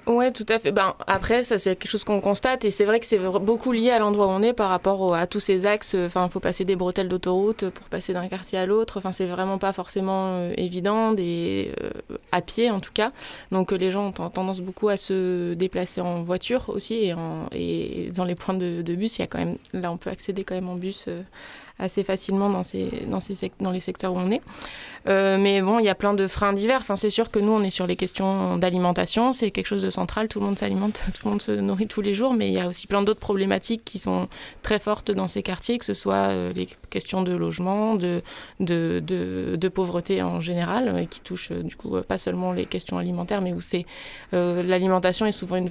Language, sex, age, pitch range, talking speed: French, female, 20-39, 180-205 Hz, 250 wpm